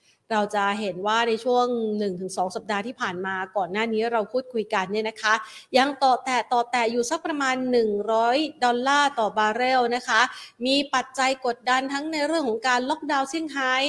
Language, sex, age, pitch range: Thai, female, 30-49, 210-260 Hz